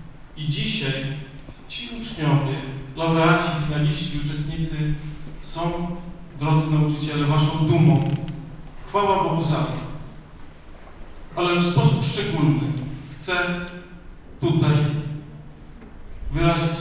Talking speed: 80 wpm